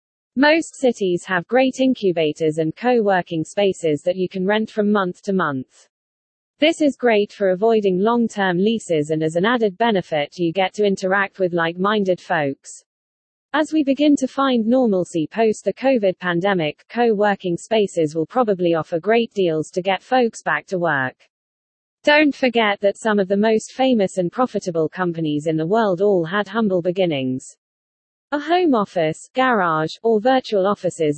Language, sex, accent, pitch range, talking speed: English, female, British, 170-230 Hz, 165 wpm